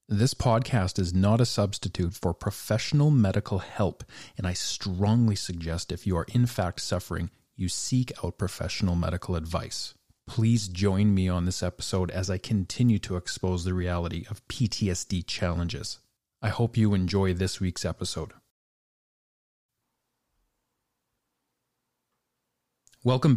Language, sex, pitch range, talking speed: English, male, 95-125 Hz, 130 wpm